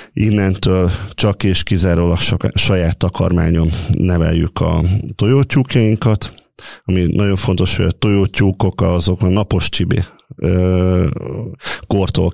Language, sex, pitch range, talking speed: Hungarian, male, 90-110 Hz, 100 wpm